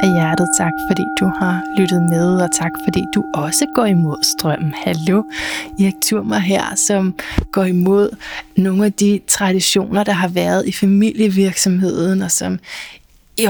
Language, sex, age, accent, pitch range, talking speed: Danish, female, 20-39, native, 175-215 Hz, 155 wpm